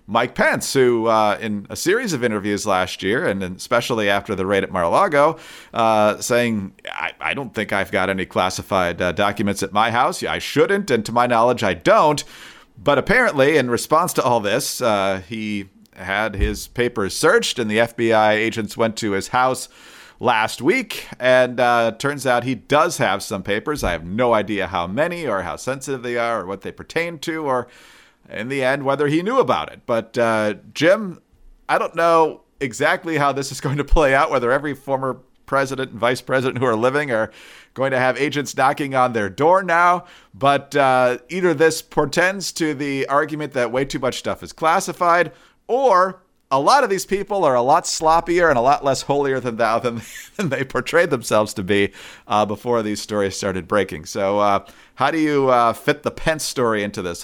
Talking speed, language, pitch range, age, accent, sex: 200 wpm, English, 105-145 Hz, 40-59, American, male